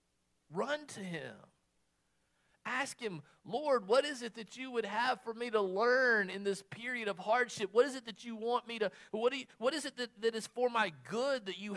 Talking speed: 225 wpm